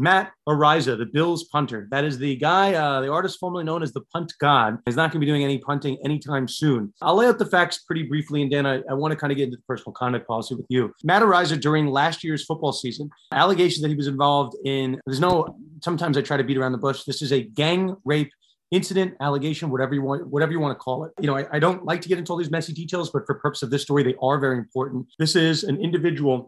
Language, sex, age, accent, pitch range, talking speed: English, male, 30-49, American, 130-160 Hz, 265 wpm